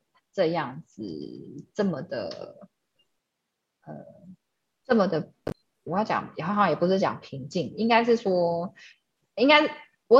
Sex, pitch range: female, 165-230 Hz